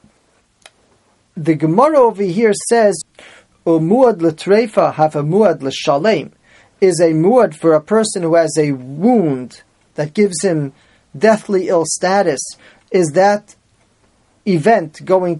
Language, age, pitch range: English, 30-49, 155-200 Hz